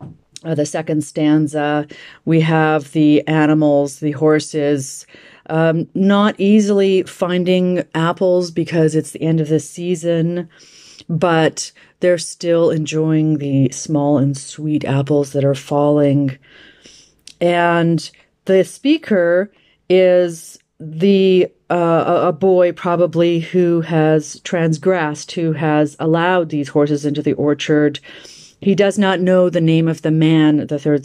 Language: English